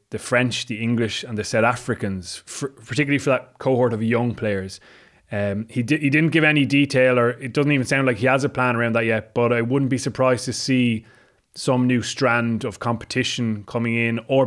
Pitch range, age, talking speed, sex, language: 110-130 Hz, 20-39, 205 wpm, male, English